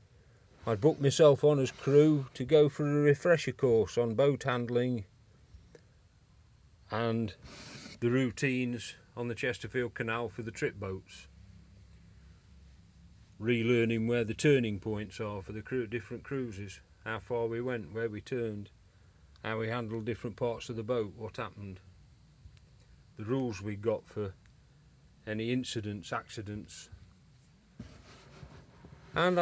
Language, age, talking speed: English, 40-59, 130 wpm